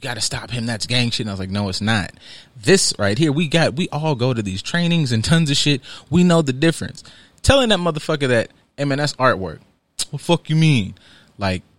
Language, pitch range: English, 105-155 Hz